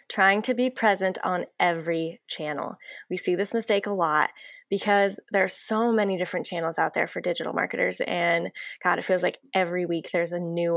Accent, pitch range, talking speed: American, 175-225 Hz, 195 wpm